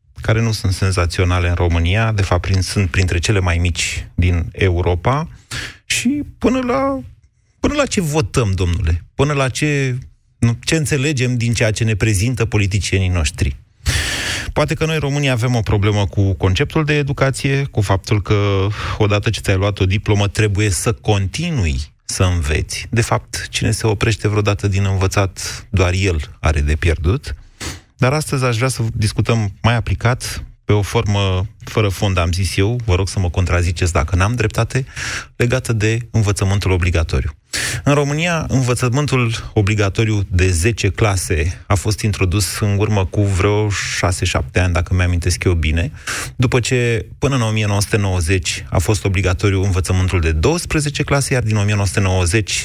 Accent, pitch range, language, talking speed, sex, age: native, 95-120 Hz, Romanian, 155 wpm, male, 30-49